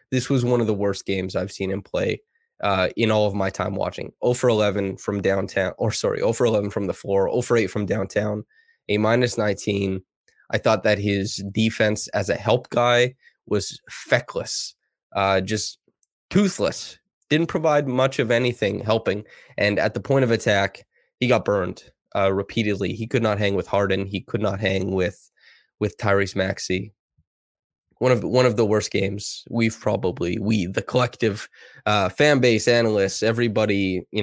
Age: 20-39